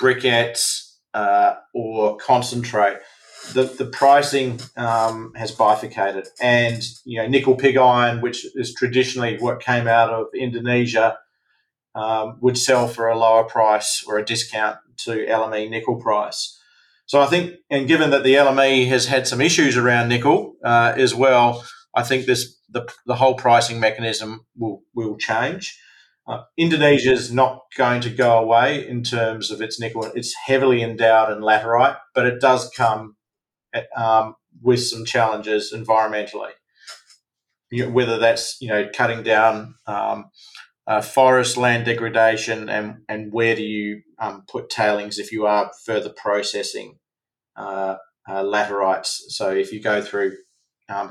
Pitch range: 110-125 Hz